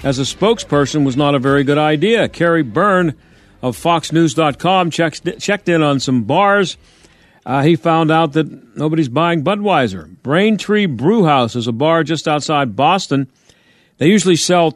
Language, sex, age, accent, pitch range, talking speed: English, male, 50-69, American, 140-180 Hz, 150 wpm